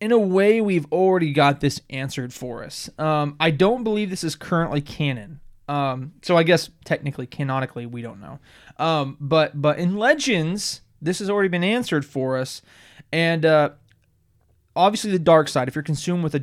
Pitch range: 130-160 Hz